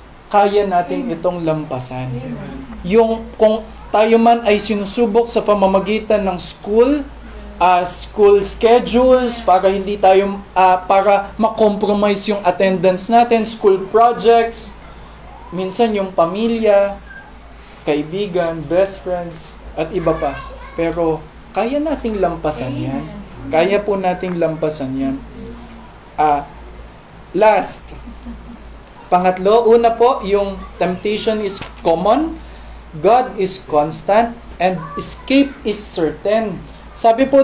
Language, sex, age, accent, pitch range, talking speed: Filipino, male, 20-39, native, 185-240 Hz, 105 wpm